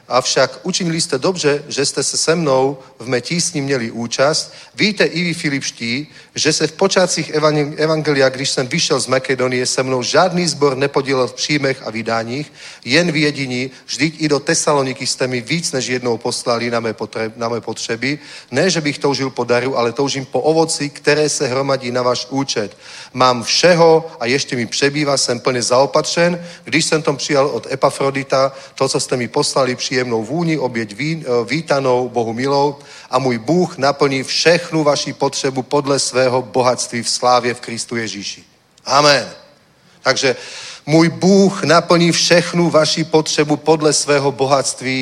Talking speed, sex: 160 wpm, male